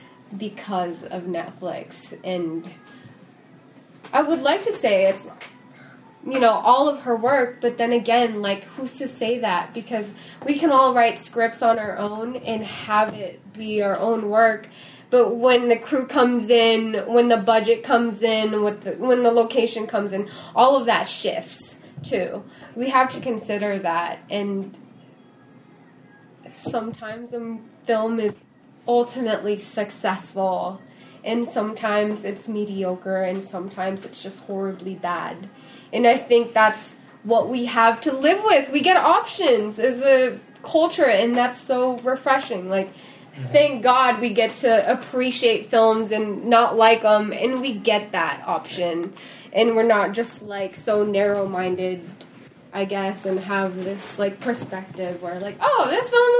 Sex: female